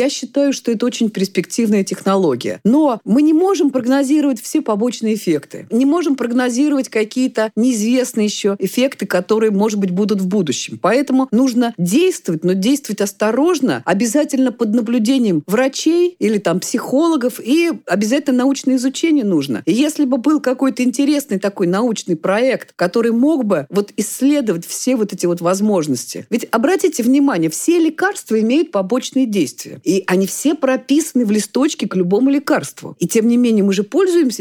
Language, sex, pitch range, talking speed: Russian, female, 195-275 Hz, 155 wpm